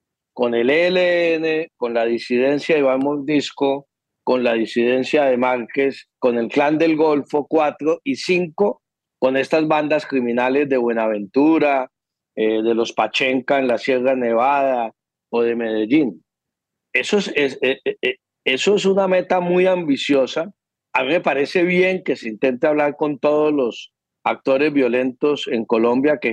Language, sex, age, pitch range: English, male, 50-69, 125-150 Hz